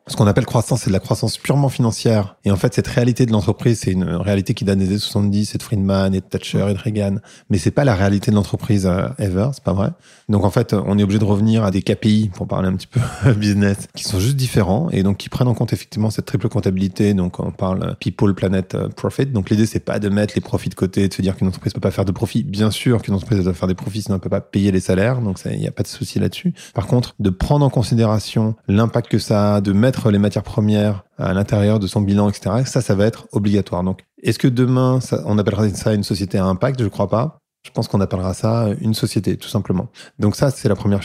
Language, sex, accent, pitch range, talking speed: French, male, French, 95-120 Hz, 270 wpm